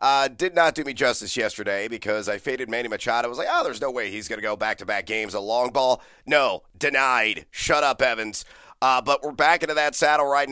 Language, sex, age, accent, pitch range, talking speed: English, male, 30-49, American, 120-150 Hz, 235 wpm